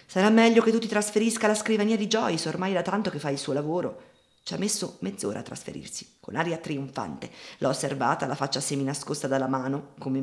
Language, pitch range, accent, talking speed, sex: Italian, 135-180 Hz, native, 210 wpm, female